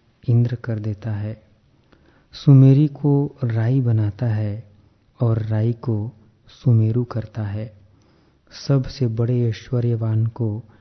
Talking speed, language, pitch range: 105 wpm, Hindi, 110-125 Hz